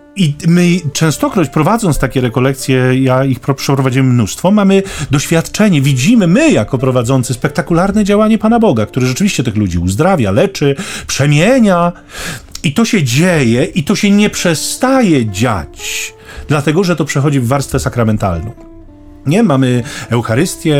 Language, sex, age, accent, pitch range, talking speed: Polish, male, 40-59, native, 125-185 Hz, 135 wpm